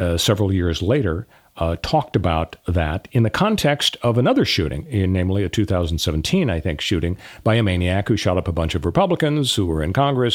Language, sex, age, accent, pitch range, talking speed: English, male, 40-59, American, 85-105 Hz, 195 wpm